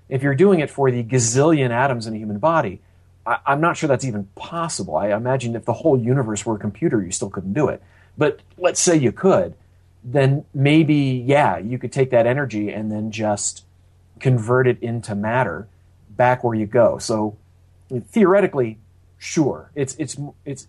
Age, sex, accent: 40-59, male, American